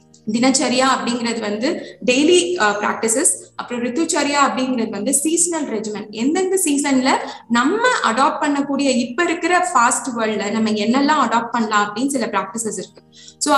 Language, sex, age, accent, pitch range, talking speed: Tamil, female, 20-39, native, 215-280 Hz, 130 wpm